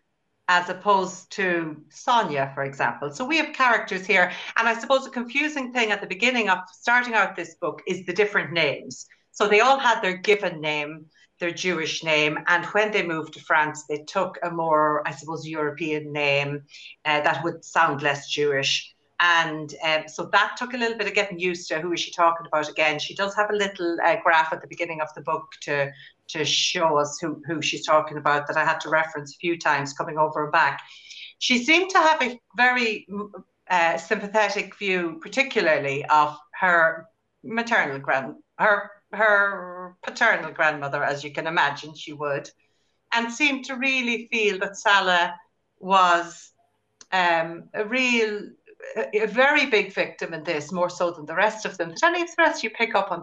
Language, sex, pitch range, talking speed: English, female, 155-210 Hz, 185 wpm